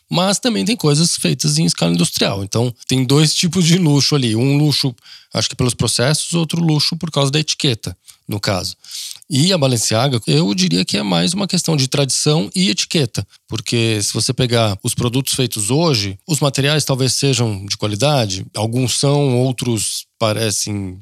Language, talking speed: Portuguese, 175 wpm